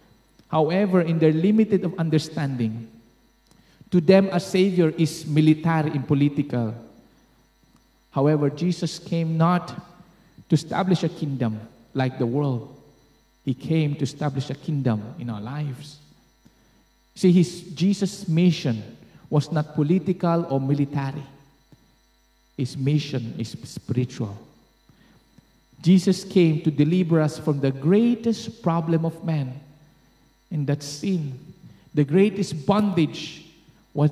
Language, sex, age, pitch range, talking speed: English, male, 50-69, 145-190 Hz, 115 wpm